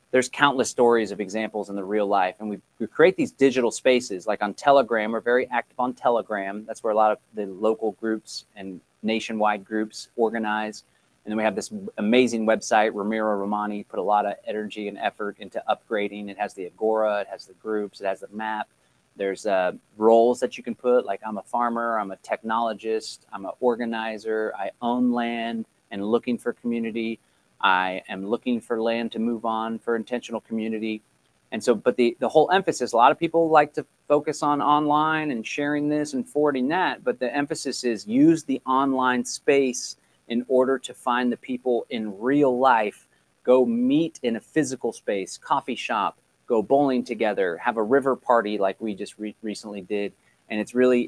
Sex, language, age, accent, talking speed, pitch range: male, English, 30-49, American, 195 wpm, 105-125 Hz